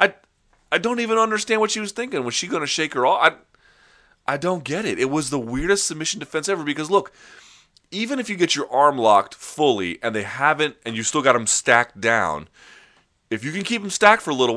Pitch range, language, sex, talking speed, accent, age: 115-155 Hz, English, male, 230 wpm, American, 30-49